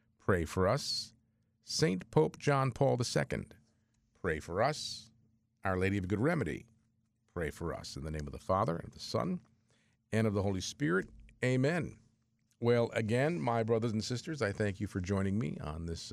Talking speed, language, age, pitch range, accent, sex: 180 wpm, English, 50-69, 90-115 Hz, American, male